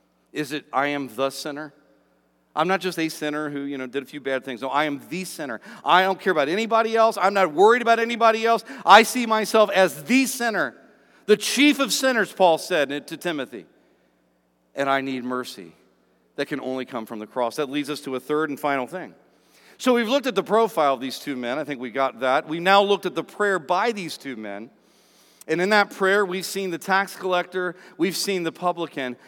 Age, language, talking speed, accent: 50-69, English, 220 wpm, American